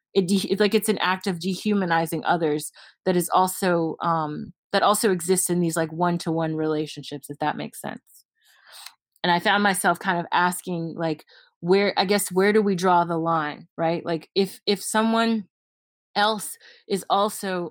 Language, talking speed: English, 175 wpm